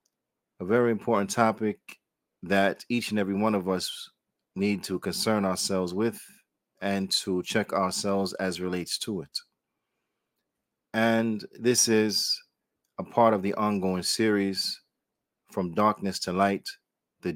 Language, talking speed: English, 130 wpm